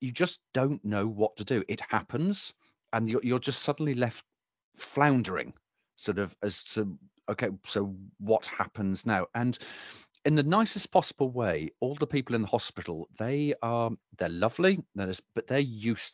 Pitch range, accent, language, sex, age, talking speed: 100-130 Hz, British, English, male, 40-59, 165 wpm